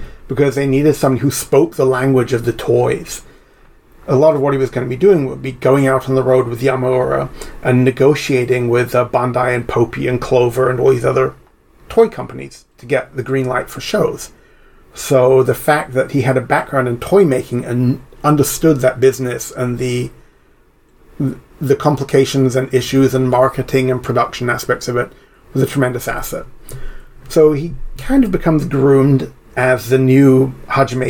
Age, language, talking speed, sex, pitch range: 30-49, English, 180 wpm, male, 125-135 Hz